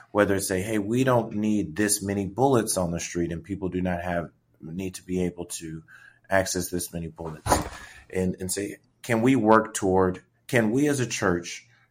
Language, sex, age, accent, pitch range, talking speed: English, male, 30-49, American, 85-110 Hz, 195 wpm